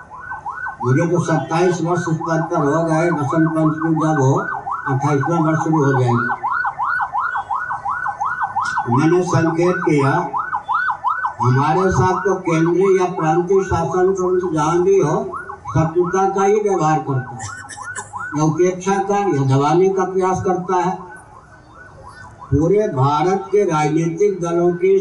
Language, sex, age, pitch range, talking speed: Hindi, male, 60-79, 140-175 Hz, 60 wpm